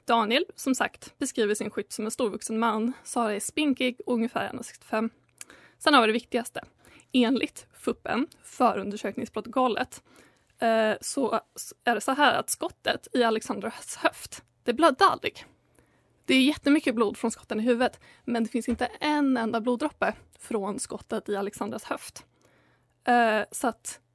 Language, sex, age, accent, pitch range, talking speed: Swedish, female, 20-39, native, 225-275 Hz, 145 wpm